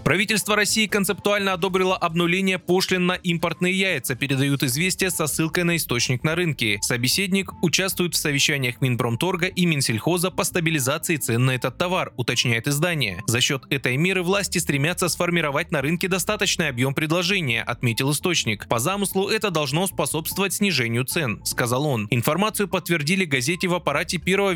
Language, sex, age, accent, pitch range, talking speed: Russian, male, 20-39, native, 130-185 Hz, 150 wpm